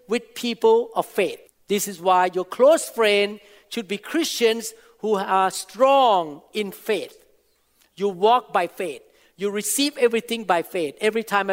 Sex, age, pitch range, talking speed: male, 50-69, 205-255 Hz, 150 wpm